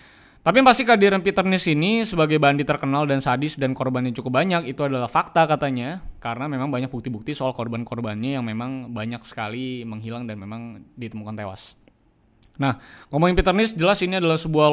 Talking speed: 170 wpm